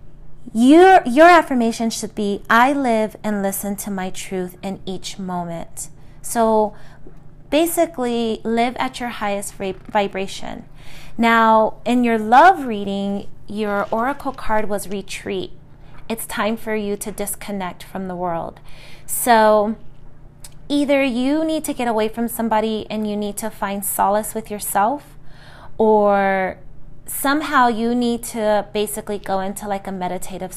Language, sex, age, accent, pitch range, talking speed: English, female, 30-49, American, 185-230 Hz, 135 wpm